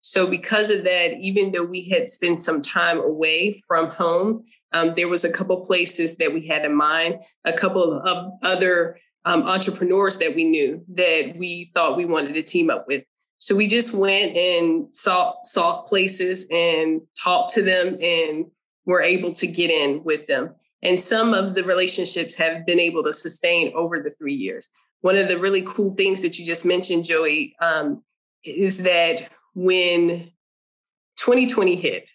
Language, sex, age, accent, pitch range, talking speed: English, female, 20-39, American, 170-205 Hz, 180 wpm